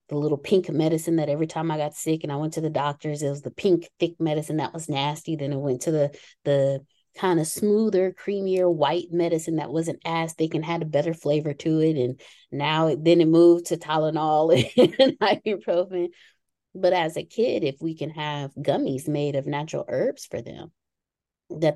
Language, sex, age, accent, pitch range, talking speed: English, female, 20-39, American, 145-175 Hz, 205 wpm